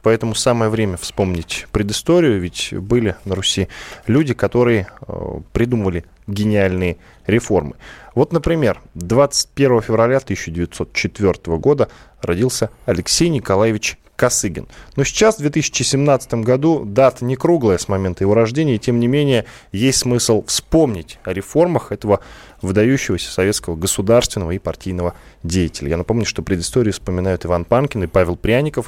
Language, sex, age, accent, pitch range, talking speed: Russian, male, 20-39, native, 95-140 Hz, 130 wpm